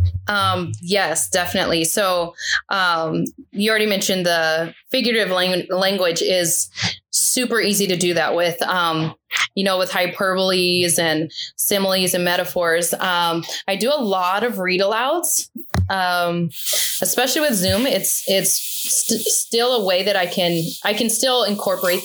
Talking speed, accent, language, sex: 140 wpm, American, English, female